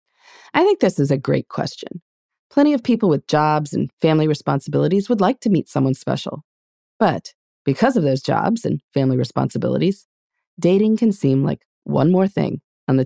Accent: American